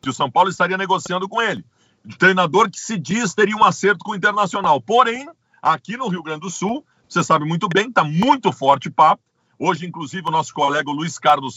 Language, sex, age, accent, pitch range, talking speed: Portuguese, male, 50-69, Brazilian, 170-220 Hz, 220 wpm